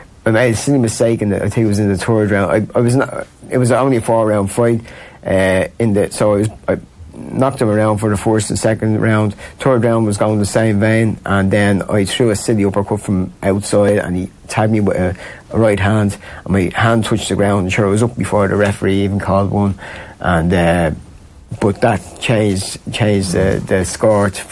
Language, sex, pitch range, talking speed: English, male, 95-110 Hz, 215 wpm